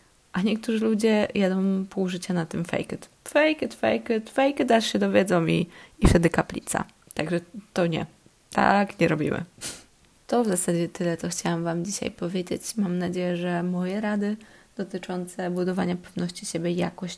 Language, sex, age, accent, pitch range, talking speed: Polish, female, 20-39, native, 175-205 Hz, 170 wpm